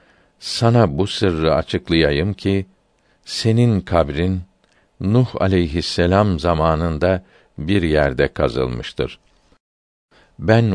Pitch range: 80-95 Hz